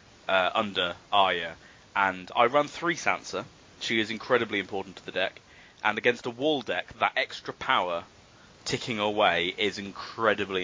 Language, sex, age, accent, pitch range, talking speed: English, male, 20-39, British, 105-135 Hz, 150 wpm